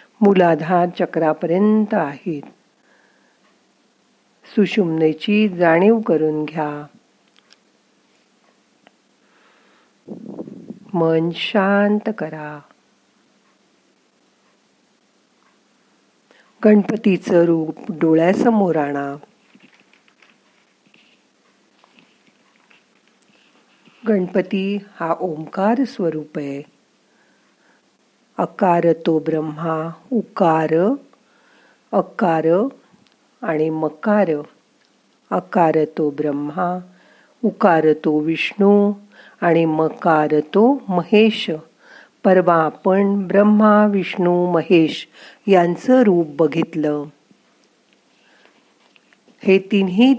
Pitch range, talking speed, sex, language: 160-205 Hz, 45 wpm, female, Marathi